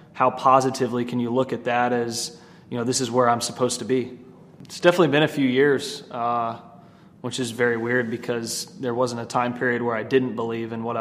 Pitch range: 120-130 Hz